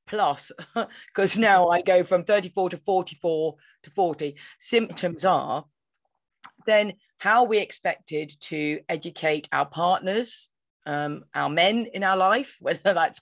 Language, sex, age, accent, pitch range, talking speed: English, female, 30-49, British, 155-195 Hz, 130 wpm